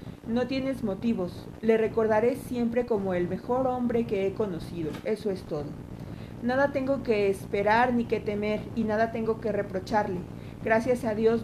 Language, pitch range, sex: Spanish, 195-230 Hz, female